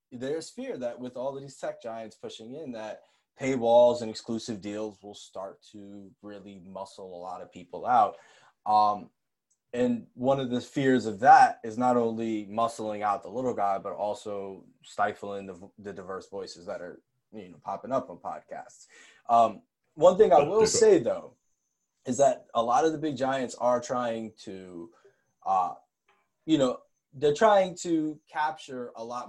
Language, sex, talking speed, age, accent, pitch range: English, male, 170 wpm, 20-39, American, 100-140 Hz